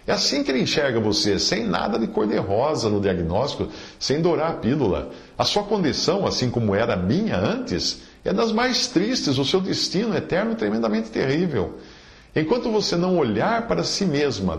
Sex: male